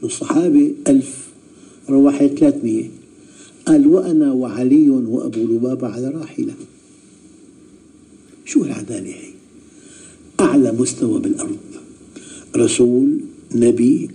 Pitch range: 285-315 Hz